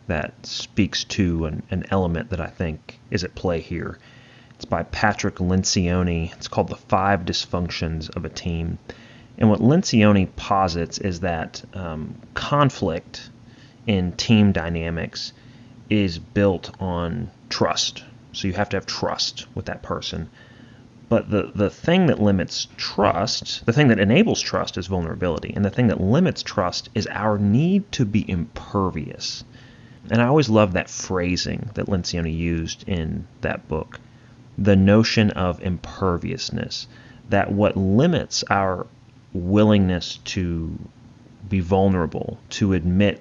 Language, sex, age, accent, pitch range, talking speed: English, male, 30-49, American, 90-120 Hz, 140 wpm